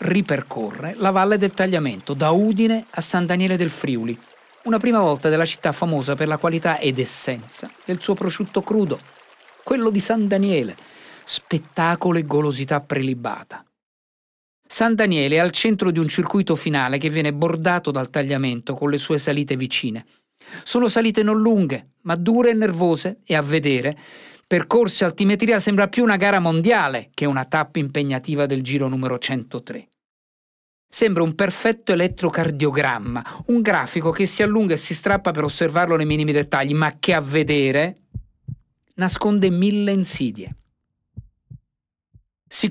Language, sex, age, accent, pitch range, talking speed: Italian, male, 50-69, native, 145-200 Hz, 150 wpm